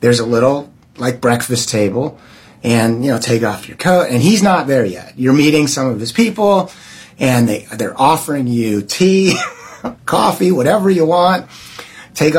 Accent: American